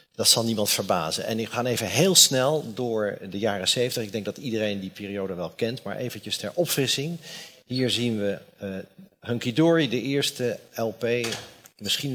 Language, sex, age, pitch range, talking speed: Dutch, male, 50-69, 110-140 Hz, 180 wpm